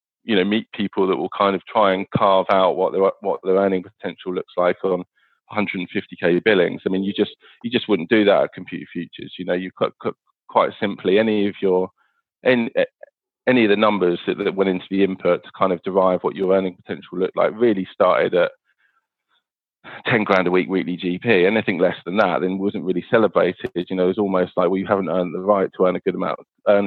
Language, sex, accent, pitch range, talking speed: English, male, British, 90-100 Hz, 225 wpm